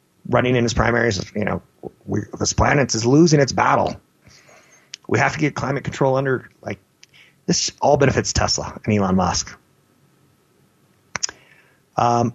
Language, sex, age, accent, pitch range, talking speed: English, male, 30-49, American, 110-130 Hz, 135 wpm